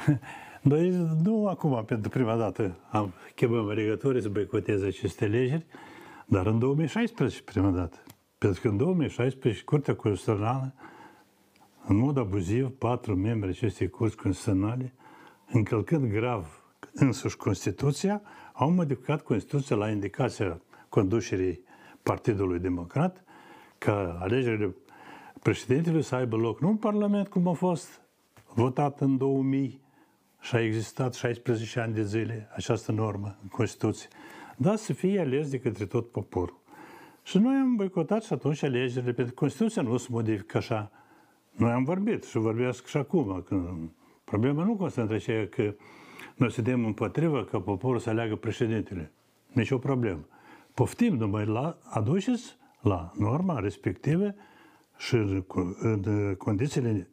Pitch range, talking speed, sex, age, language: 105-145 Hz, 130 wpm, male, 60-79, Romanian